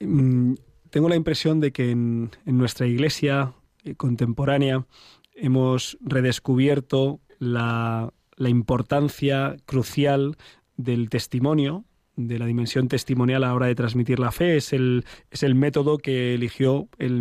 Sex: male